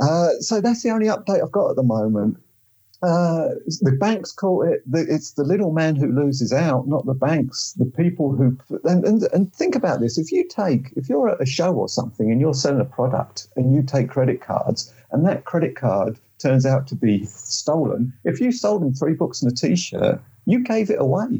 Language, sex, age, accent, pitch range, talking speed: English, male, 50-69, British, 130-190 Hz, 215 wpm